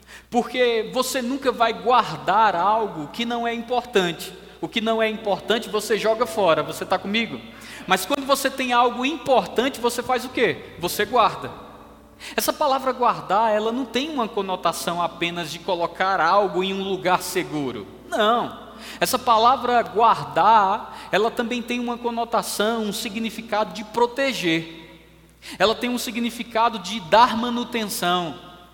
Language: Portuguese